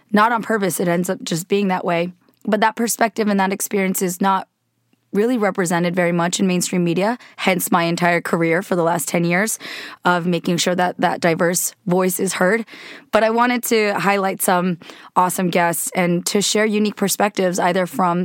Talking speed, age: 190 wpm, 20-39